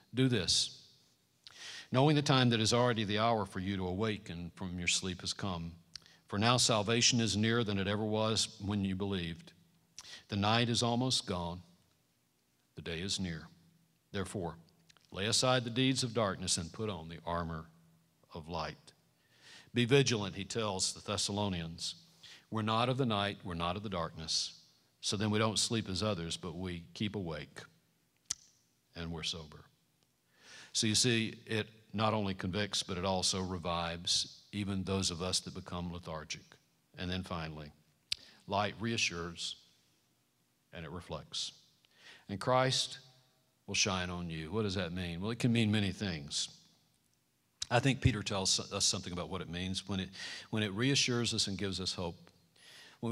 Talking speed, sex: 165 wpm, male